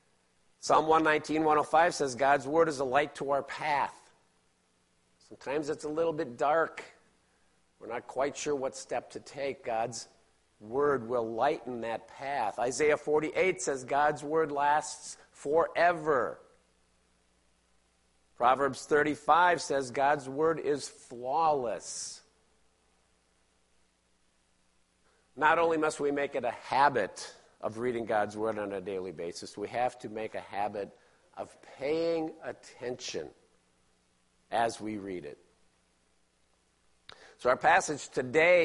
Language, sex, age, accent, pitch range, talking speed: English, male, 50-69, American, 95-150 Hz, 120 wpm